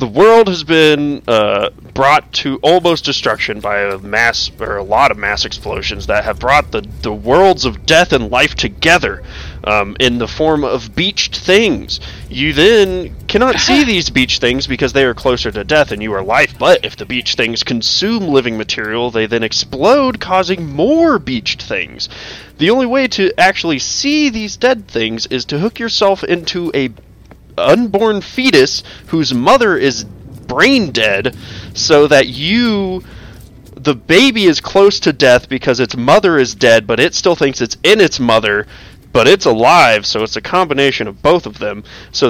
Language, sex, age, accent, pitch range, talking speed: English, male, 20-39, American, 115-190 Hz, 175 wpm